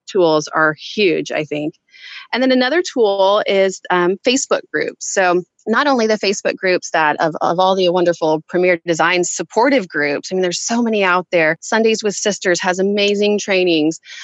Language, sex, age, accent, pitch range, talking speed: English, female, 30-49, American, 170-210 Hz, 175 wpm